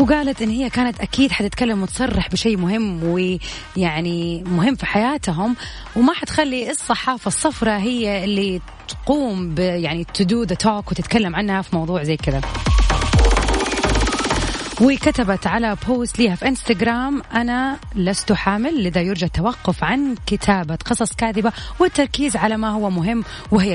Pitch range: 185-235 Hz